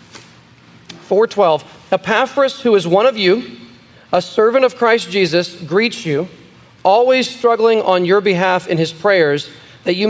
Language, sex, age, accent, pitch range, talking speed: English, male, 40-59, American, 180-225 Hz, 145 wpm